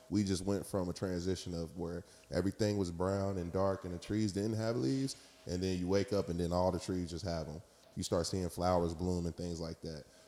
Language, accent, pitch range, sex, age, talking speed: English, American, 85-100 Hz, male, 20-39, 240 wpm